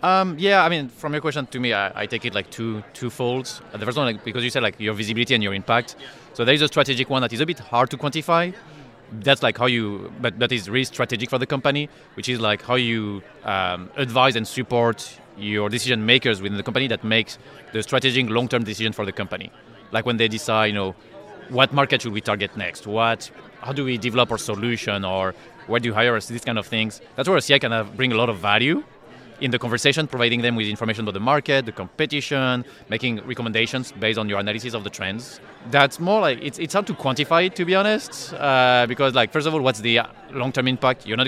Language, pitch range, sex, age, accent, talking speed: English, 110-140 Hz, male, 30-49, French, 235 wpm